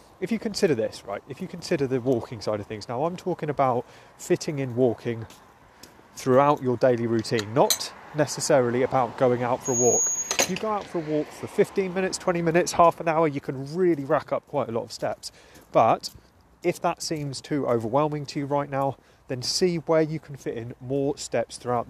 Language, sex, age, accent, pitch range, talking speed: English, male, 30-49, British, 120-150 Hz, 210 wpm